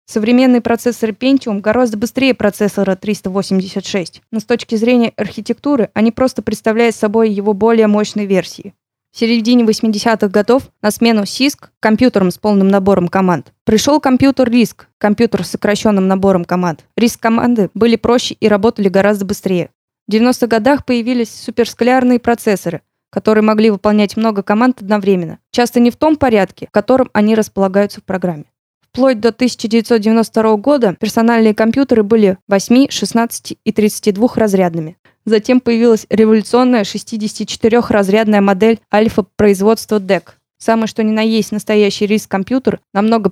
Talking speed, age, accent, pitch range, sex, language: 135 wpm, 20-39, native, 200-235 Hz, female, Russian